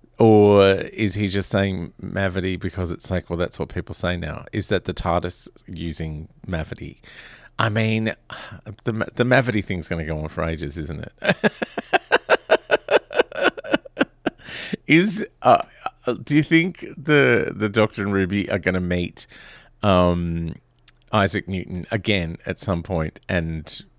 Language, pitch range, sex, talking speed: English, 85-125 Hz, male, 140 wpm